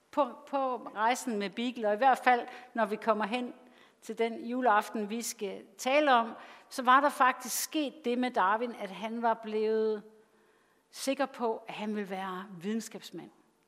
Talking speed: 165 wpm